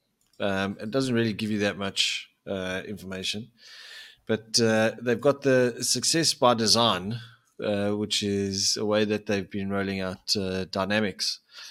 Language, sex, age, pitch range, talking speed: English, male, 20-39, 95-120 Hz, 155 wpm